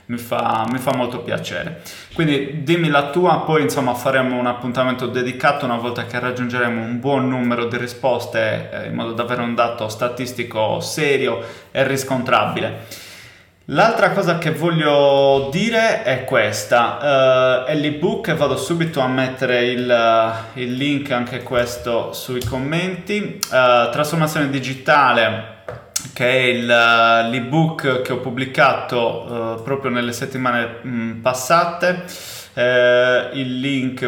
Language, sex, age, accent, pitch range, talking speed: Italian, male, 20-39, native, 120-145 Hz, 120 wpm